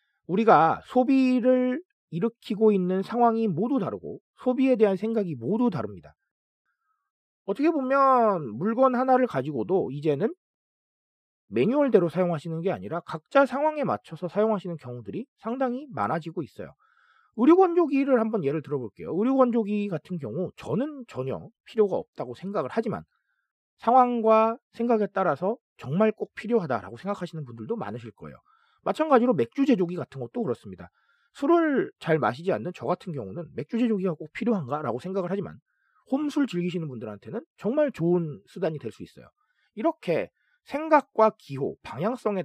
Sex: male